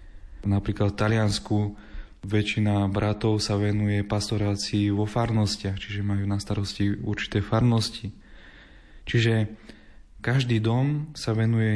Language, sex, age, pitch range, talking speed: Slovak, male, 20-39, 100-110 Hz, 105 wpm